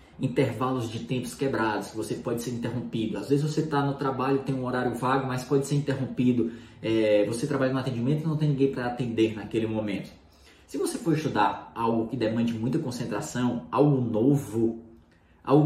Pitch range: 115-150 Hz